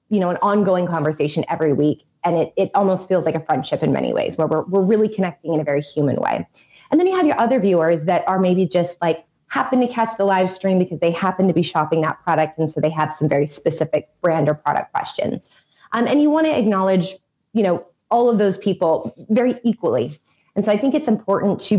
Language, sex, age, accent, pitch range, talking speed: English, female, 20-39, American, 165-215 Hz, 235 wpm